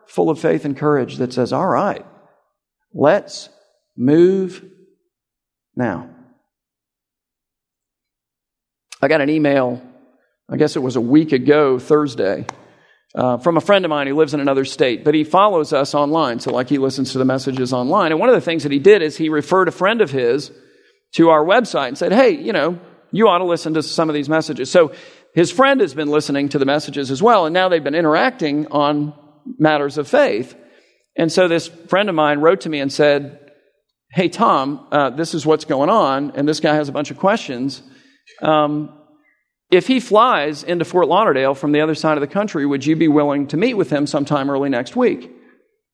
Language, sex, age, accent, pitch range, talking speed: English, male, 50-69, American, 145-185 Hz, 200 wpm